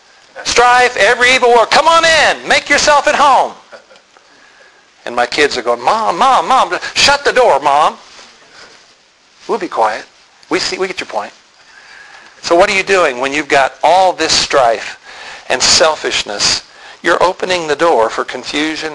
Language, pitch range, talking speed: English, 110-150 Hz, 160 wpm